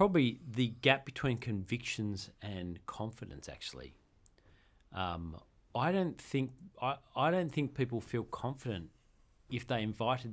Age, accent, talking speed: 40-59, Australian, 130 wpm